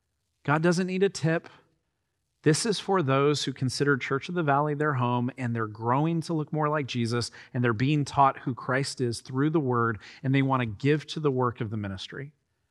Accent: American